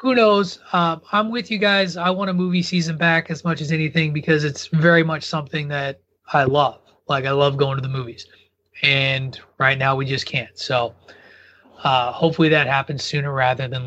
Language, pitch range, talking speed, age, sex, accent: English, 140-185 Hz, 200 wpm, 30-49, male, American